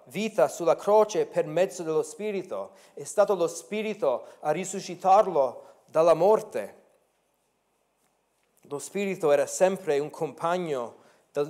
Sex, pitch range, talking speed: male, 140-175 Hz, 115 wpm